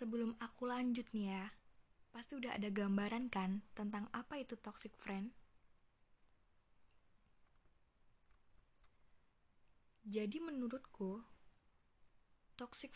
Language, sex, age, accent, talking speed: Indonesian, female, 20-39, native, 85 wpm